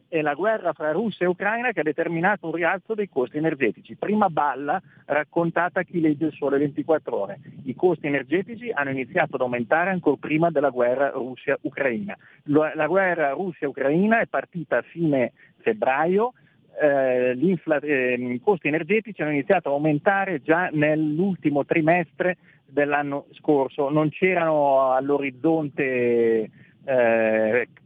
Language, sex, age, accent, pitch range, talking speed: Italian, male, 40-59, native, 140-180 Hz, 135 wpm